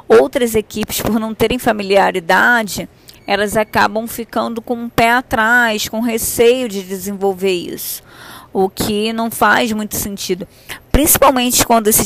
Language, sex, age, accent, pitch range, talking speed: Portuguese, female, 20-39, Brazilian, 200-245 Hz, 135 wpm